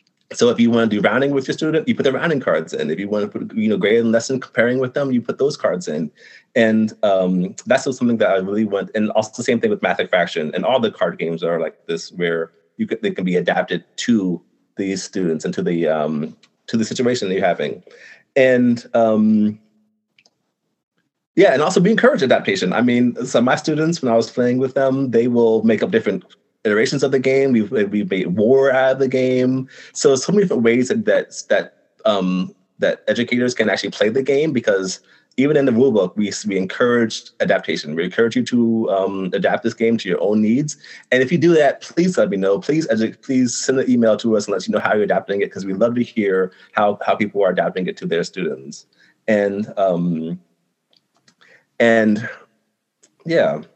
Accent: American